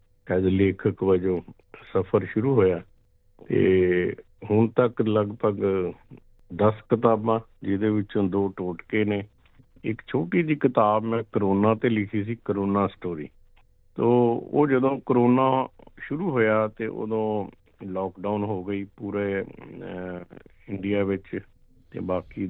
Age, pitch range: 50-69, 95-120 Hz